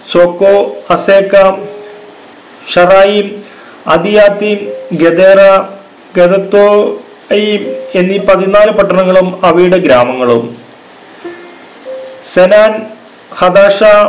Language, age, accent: Malayalam, 40-59, native